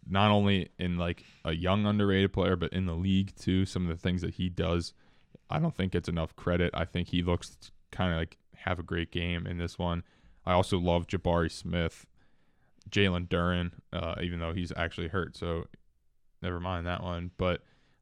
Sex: male